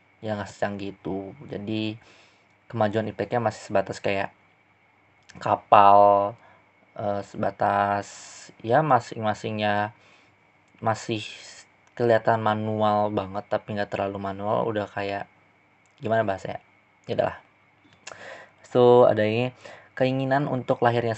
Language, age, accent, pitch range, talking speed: Indonesian, 20-39, native, 100-115 Hz, 100 wpm